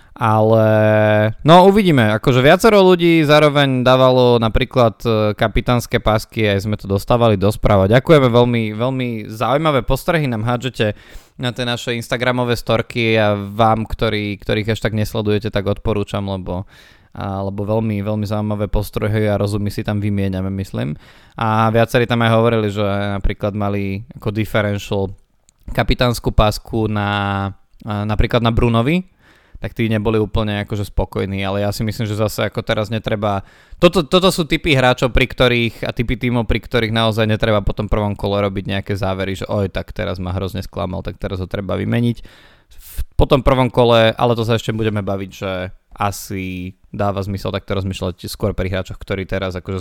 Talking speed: 165 wpm